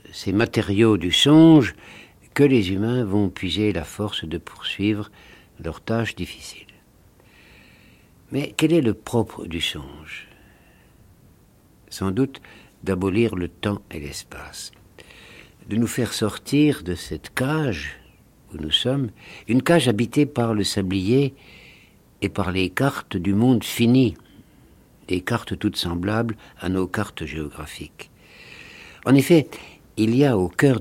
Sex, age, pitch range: male, 60-79, 90-125 Hz